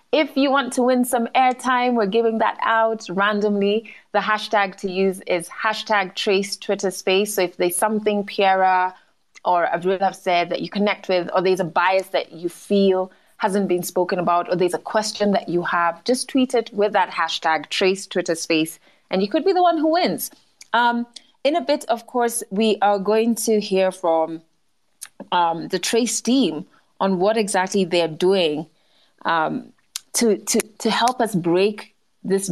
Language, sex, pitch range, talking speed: English, female, 180-230 Hz, 180 wpm